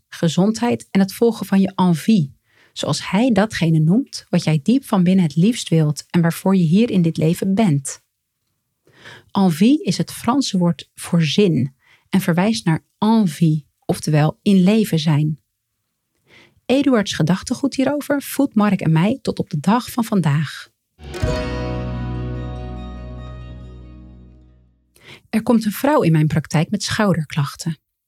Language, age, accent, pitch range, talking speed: Dutch, 40-59, Dutch, 155-225 Hz, 135 wpm